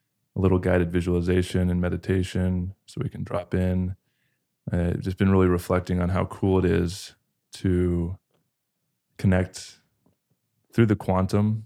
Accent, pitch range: American, 90-95 Hz